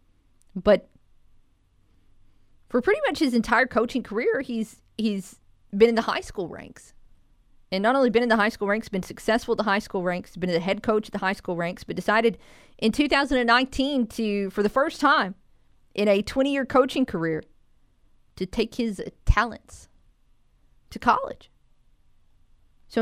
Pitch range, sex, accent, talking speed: 170-230 Hz, female, American, 160 wpm